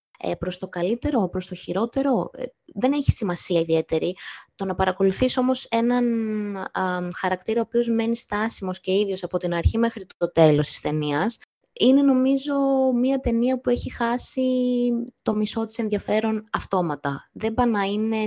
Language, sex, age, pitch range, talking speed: Greek, female, 20-39, 180-230 Hz, 155 wpm